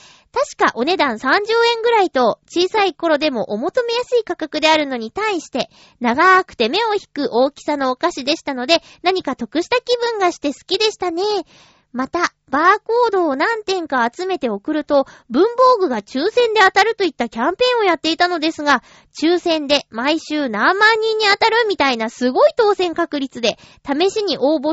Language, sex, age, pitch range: Japanese, female, 20-39, 275-390 Hz